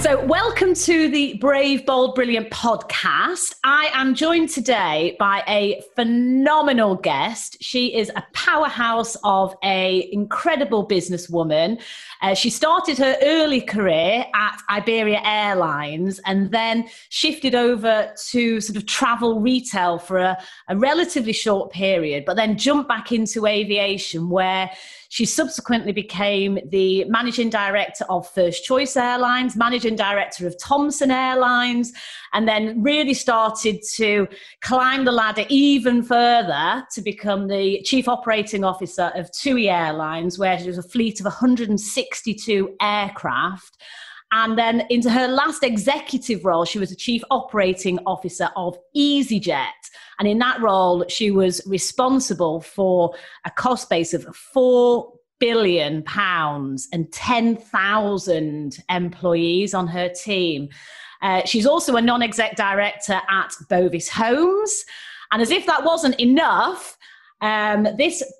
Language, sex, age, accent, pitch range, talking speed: English, female, 30-49, British, 190-260 Hz, 130 wpm